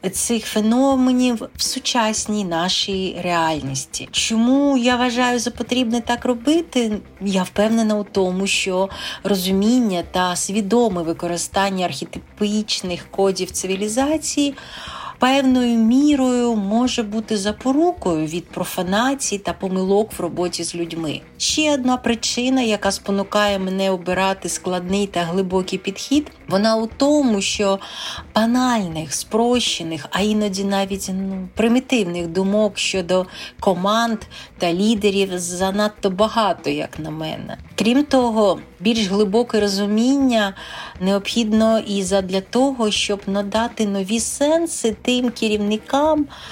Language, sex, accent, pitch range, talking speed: Ukrainian, female, native, 190-235 Hz, 110 wpm